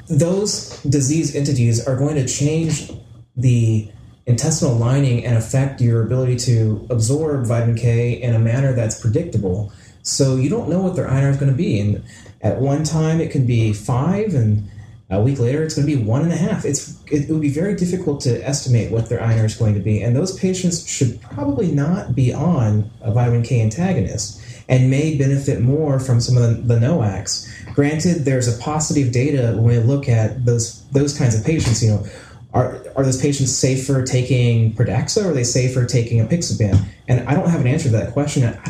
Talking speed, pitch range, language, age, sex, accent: 205 wpm, 115-145 Hz, English, 30-49, male, American